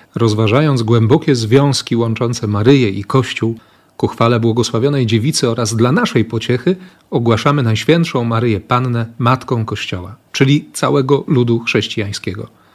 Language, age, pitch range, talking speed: Polish, 40-59, 110-140 Hz, 120 wpm